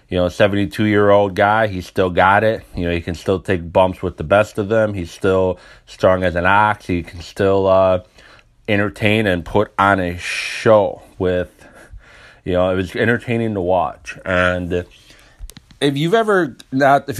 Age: 30-49